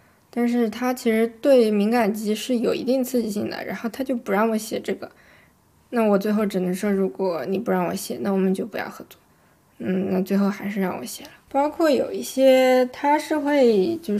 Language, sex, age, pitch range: Chinese, female, 20-39, 200-240 Hz